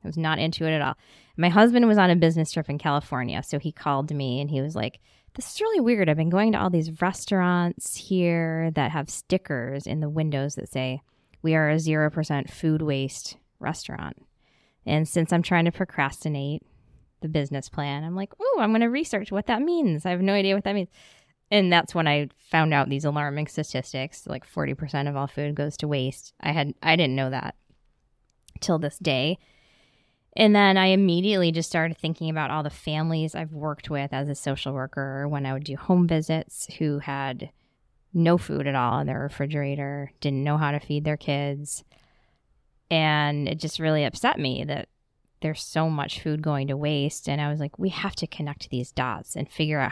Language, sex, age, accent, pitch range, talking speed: English, female, 20-39, American, 140-170 Hz, 205 wpm